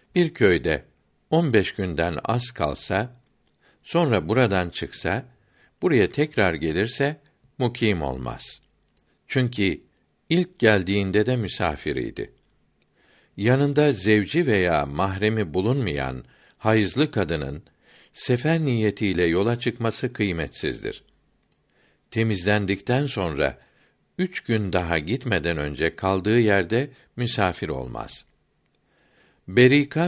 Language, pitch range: Turkish, 90-120 Hz